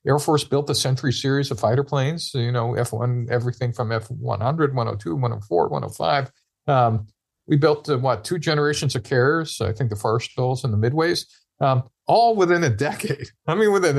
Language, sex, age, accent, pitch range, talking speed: English, male, 50-69, American, 120-155 Hz, 185 wpm